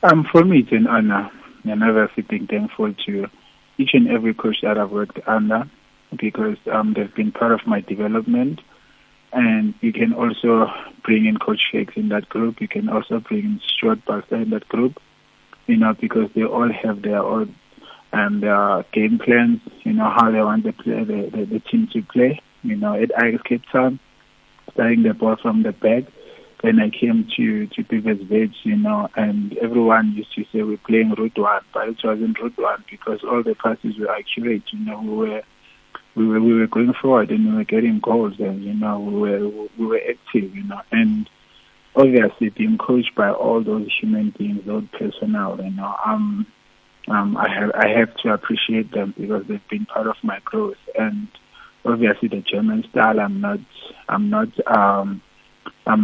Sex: male